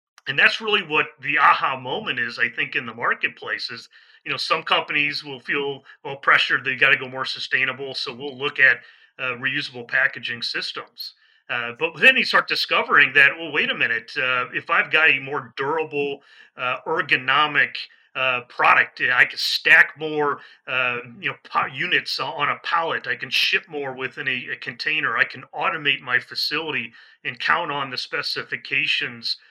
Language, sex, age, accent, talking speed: English, male, 30-49, American, 175 wpm